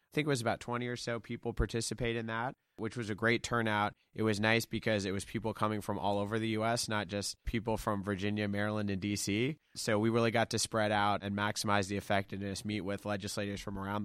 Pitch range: 100-110 Hz